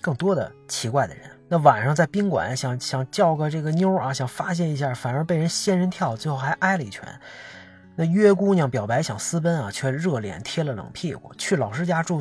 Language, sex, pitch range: Chinese, male, 125-170 Hz